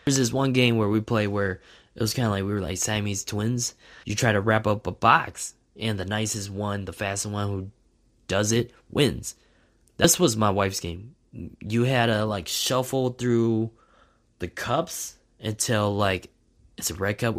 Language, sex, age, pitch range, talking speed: English, male, 20-39, 100-120 Hz, 190 wpm